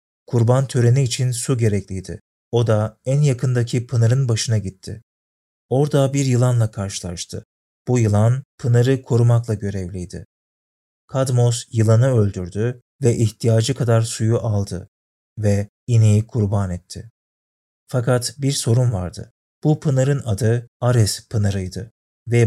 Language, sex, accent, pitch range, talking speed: Turkish, male, native, 105-125 Hz, 115 wpm